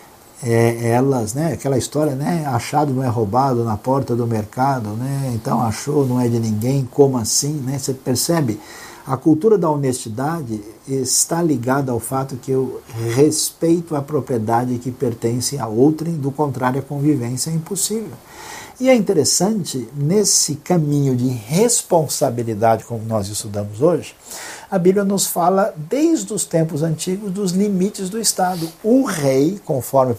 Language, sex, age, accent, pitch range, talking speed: Portuguese, male, 60-79, Brazilian, 120-175 Hz, 150 wpm